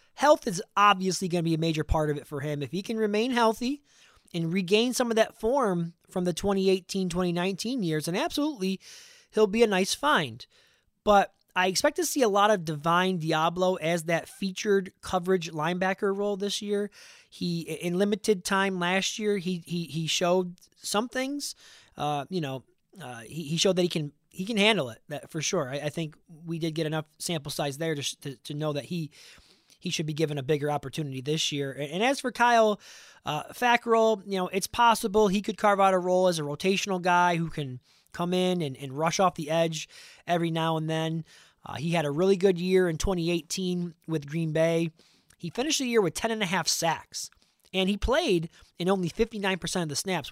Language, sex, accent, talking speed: English, male, American, 205 wpm